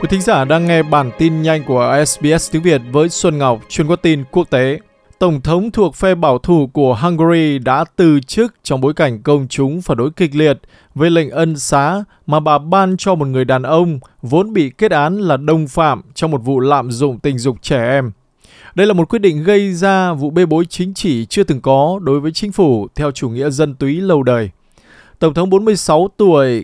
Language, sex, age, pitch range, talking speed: Vietnamese, male, 20-39, 135-175 Hz, 220 wpm